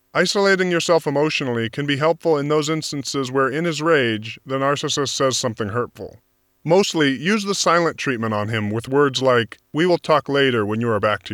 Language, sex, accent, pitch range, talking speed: English, male, American, 115-160 Hz, 195 wpm